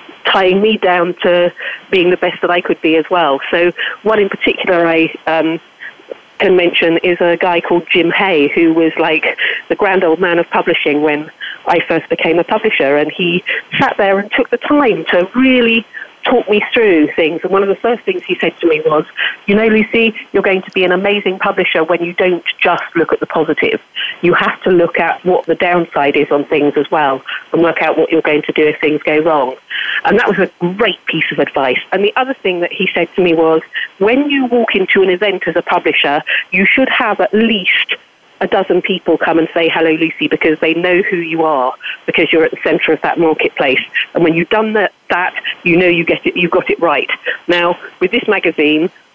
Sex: female